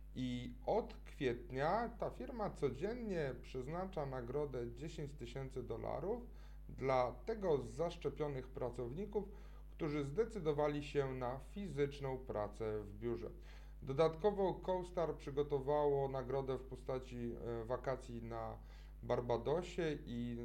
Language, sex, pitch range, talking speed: Polish, male, 120-155 Hz, 95 wpm